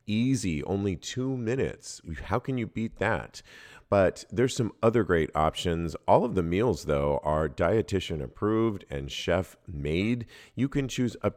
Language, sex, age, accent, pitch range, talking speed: English, male, 40-59, American, 80-110 Hz, 160 wpm